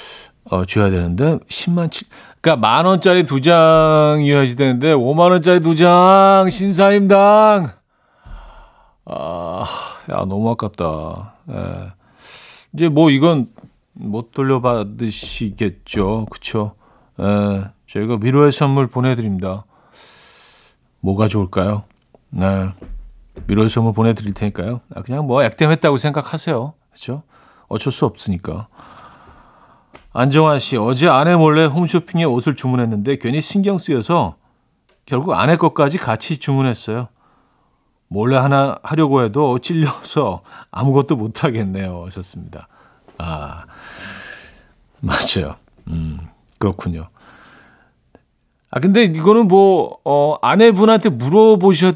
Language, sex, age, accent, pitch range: Korean, male, 40-59, native, 105-160 Hz